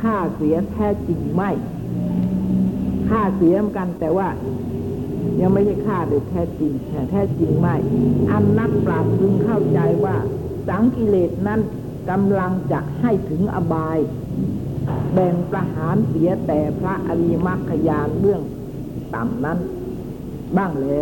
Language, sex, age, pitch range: Thai, female, 60-79, 145-200 Hz